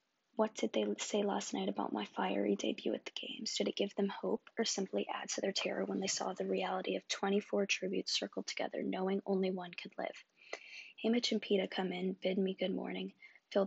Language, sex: English, female